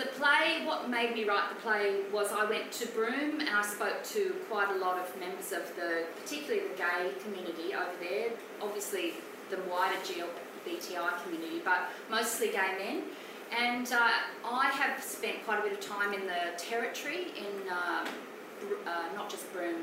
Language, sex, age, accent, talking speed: English, female, 30-49, Australian, 175 wpm